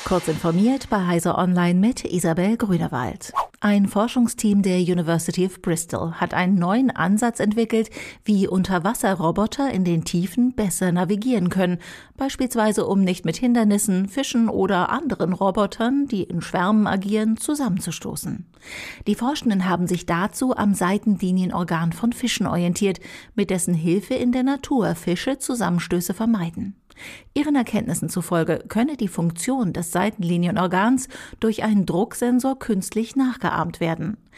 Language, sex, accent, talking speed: German, female, German, 130 wpm